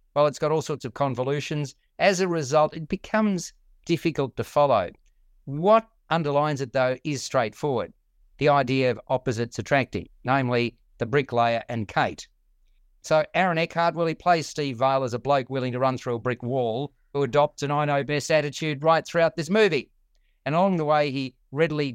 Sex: male